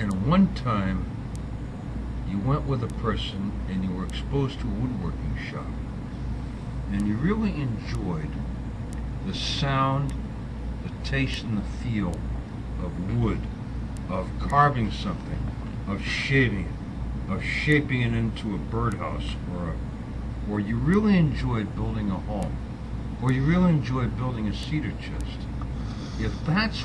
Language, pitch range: English, 105-135 Hz